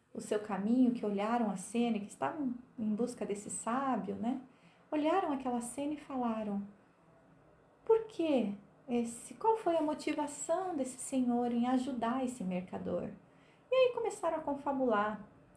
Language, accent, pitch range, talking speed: Portuguese, Brazilian, 210-300 Hz, 145 wpm